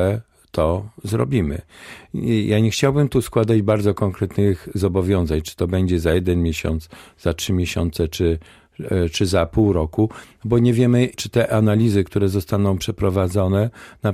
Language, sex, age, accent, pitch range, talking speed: Polish, male, 50-69, native, 90-115 Hz, 145 wpm